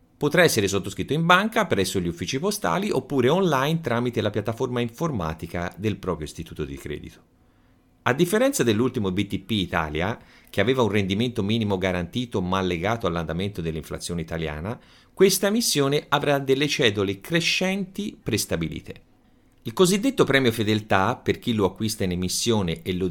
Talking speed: 145 wpm